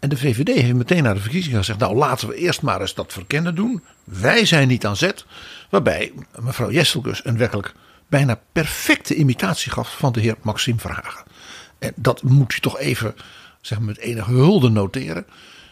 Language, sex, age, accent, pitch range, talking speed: Dutch, male, 60-79, Dutch, 105-160 Hz, 185 wpm